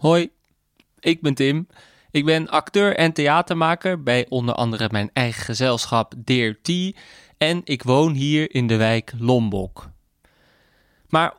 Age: 20-39